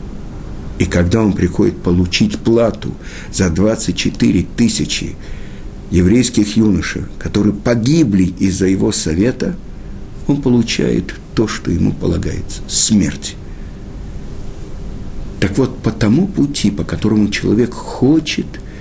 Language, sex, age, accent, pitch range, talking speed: Russian, male, 60-79, native, 95-130 Hz, 100 wpm